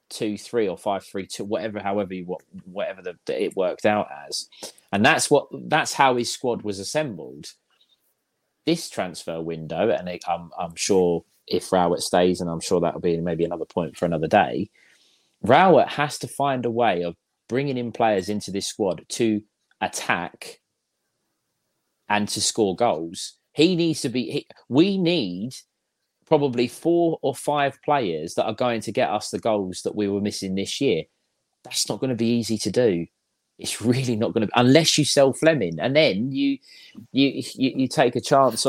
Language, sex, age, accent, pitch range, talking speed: English, male, 30-49, British, 90-125 Hz, 180 wpm